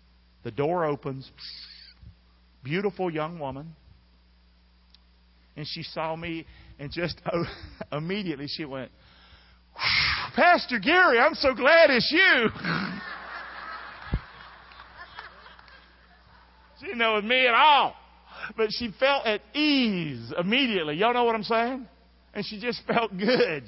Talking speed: 115 wpm